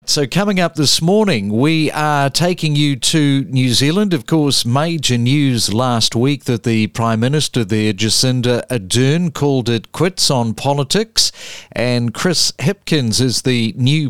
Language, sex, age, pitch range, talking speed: English, male, 50-69, 120-155 Hz, 155 wpm